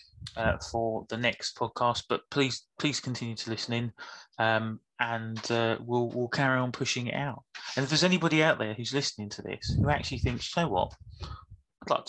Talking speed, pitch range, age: 200 wpm, 115-160 Hz, 30-49